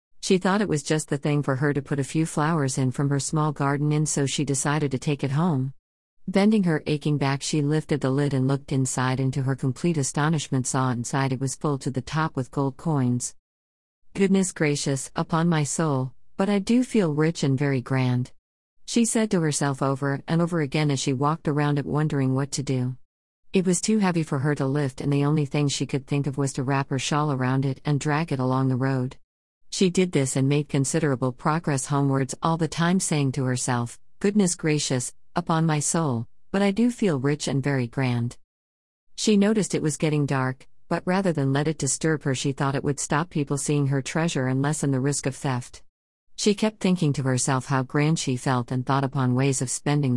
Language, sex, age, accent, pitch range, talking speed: English, female, 50-69, American, 130-160 Hz, 220 wpm